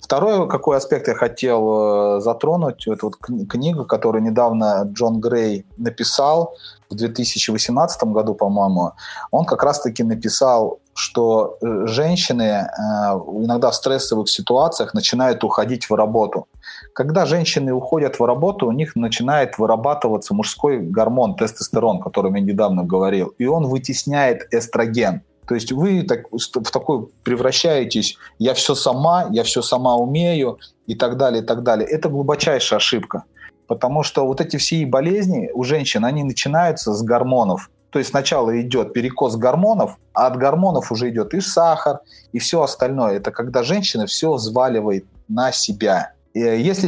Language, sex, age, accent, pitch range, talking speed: Russian, male, 30-49, native, 115-160 Hz, 140 wpm